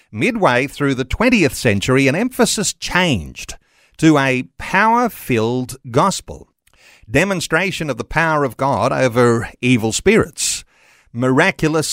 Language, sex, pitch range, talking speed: English, male, 125-185 Hz, 110 wpm